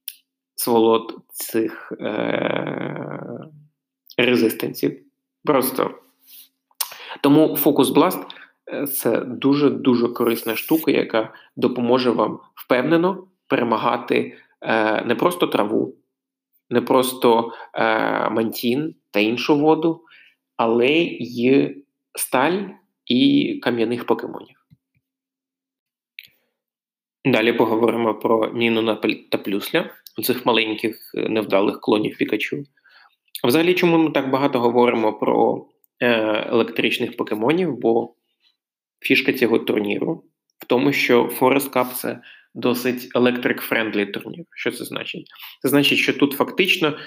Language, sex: Ukrainian, male